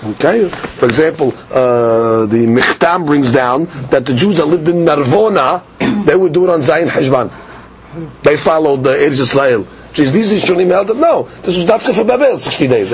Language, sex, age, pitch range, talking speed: English, male, 40-59, 150-215 Hz, 175 wpm